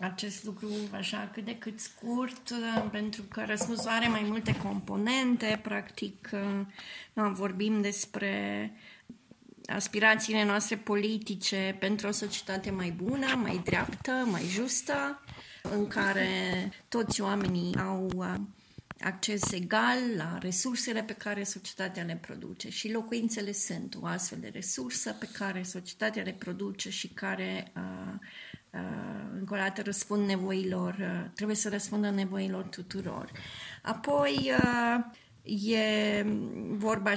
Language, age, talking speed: Romanian, 20-39, 115 wpm